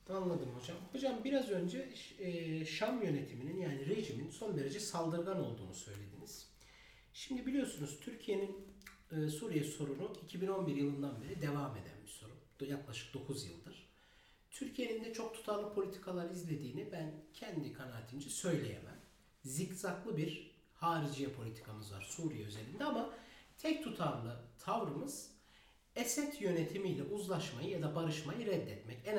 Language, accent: Turkish, native